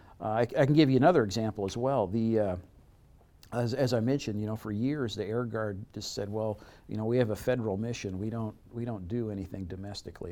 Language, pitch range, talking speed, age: English, 100-130 Hz, 235 wpm, 50-69